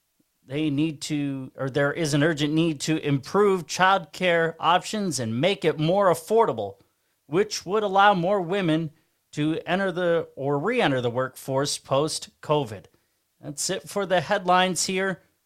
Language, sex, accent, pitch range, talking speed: English, male, American, 150-200 Hz, 150 wpm